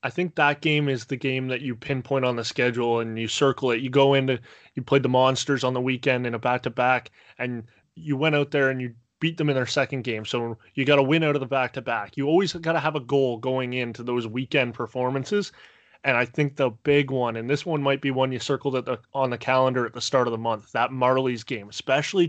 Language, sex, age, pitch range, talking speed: English, male, 20-39, 125-145 Hz, 255 wpm